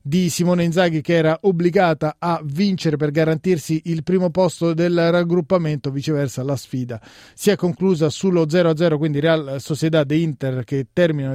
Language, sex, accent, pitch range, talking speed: Italian, male, native, 145-175 Hz, 160 wpm